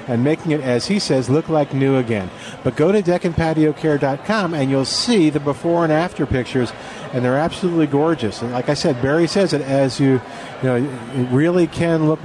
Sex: male